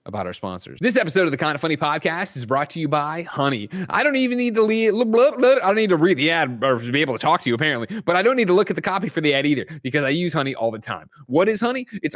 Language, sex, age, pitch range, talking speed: English, male, 30-49, 120-170 Hz, 305 wpm